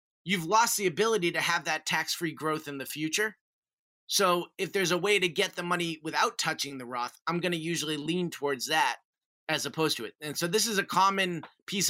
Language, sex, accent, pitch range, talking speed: English, male, American, 135-175 Hz, 215 wpm